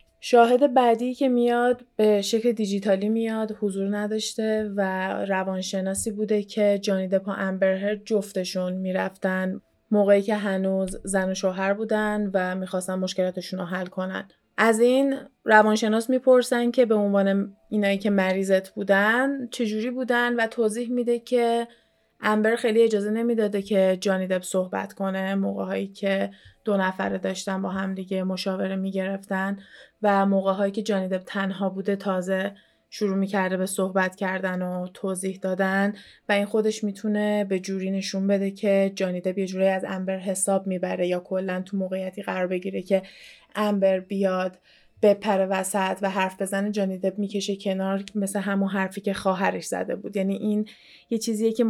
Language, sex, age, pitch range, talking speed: Persian, female, 20-39, 190-215 Hz, 150 wpm